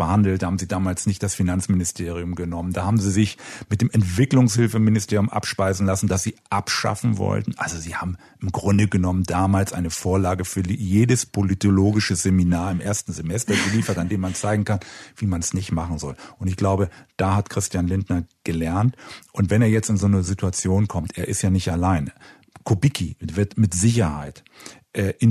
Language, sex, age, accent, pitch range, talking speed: German, male, 40-59, German, 90-110 Hz, 180 wpm